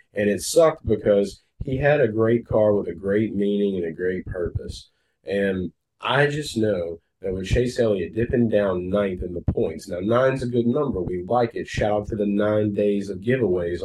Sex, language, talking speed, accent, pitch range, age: male, English, 205 wpm, American, 95-120 Hz, 30-49